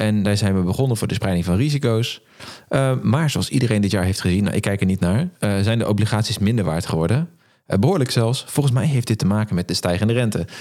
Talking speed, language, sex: 250 wpm, Dutch, male